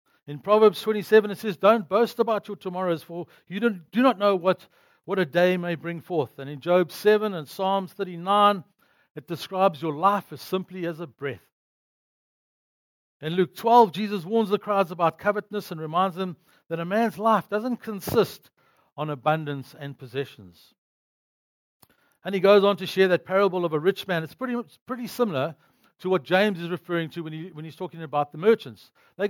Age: 60-79